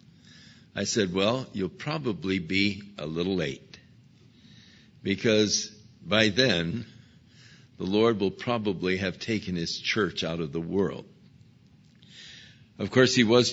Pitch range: 100-130 Hz